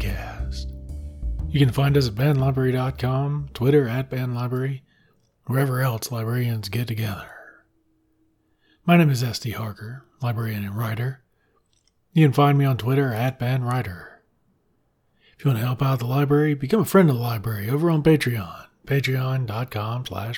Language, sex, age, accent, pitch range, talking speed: English, male, 40-59, American, 115-135 Hz, 140 wpm